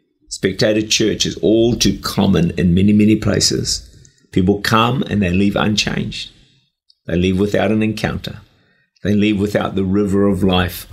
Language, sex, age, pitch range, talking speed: English, male, 50-69, 95-125 Hz, 155 wpm